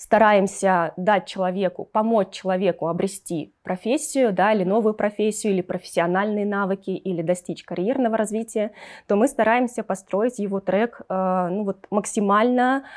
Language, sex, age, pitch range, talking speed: Russian, female, 20-39, 185-225 Hz, 115 wpm